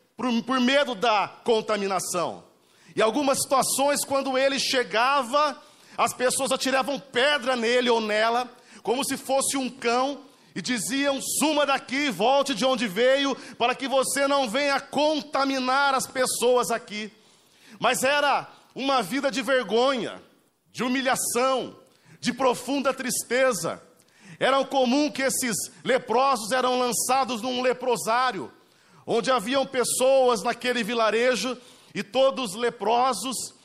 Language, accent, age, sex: Portuguese, Brazilian, 40-59, male